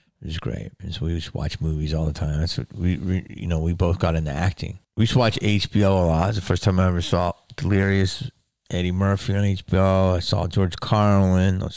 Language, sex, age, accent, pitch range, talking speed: English, male, 30-49, American, 90-110 Hz, 235 wpm